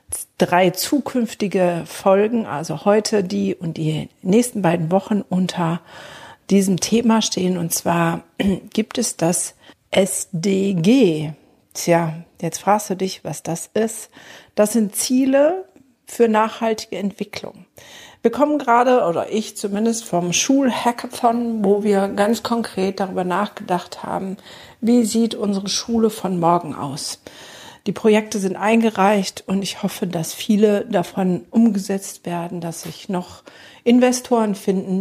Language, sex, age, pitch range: German, female, 50-69, 180-230 Hz